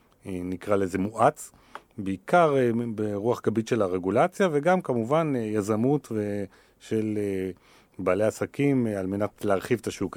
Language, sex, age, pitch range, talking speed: Hebrew, male, 40-59, 100-140 Hz, 110 wpm